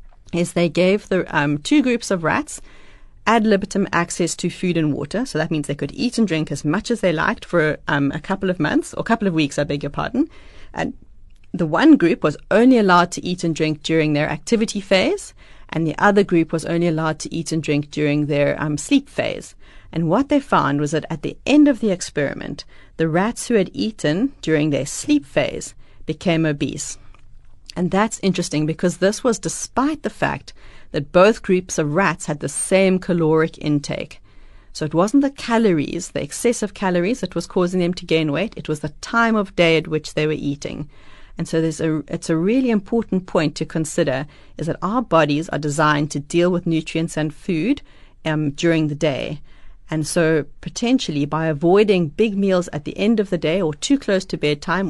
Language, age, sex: English, 40-59, female